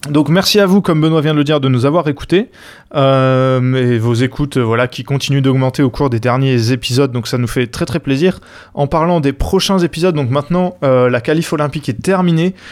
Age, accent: 20-39, French